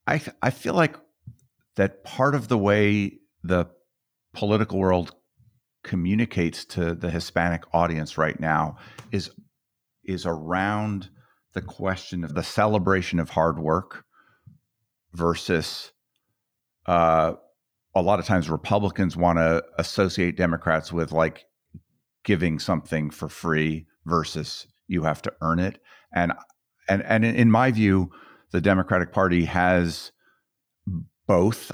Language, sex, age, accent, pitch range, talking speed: English, male, 50-69, American, 85-105 Hz, 125 wpm